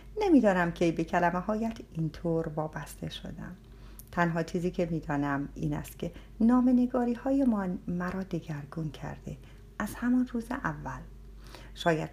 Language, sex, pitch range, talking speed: Persian, female, 155-235 Hz, 135 wpm